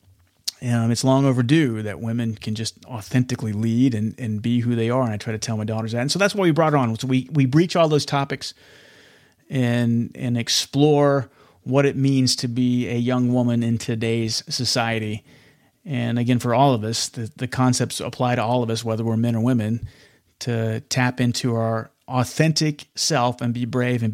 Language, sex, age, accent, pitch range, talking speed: English, male, 30-49, American, 110-135 Hz, 205 wpm